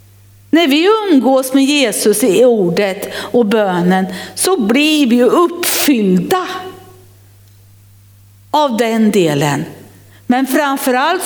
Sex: female